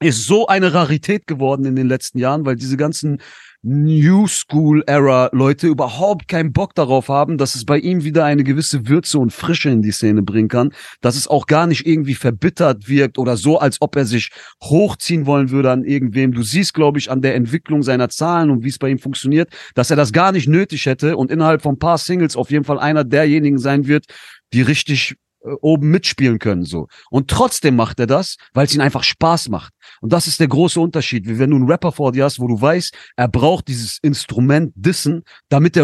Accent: German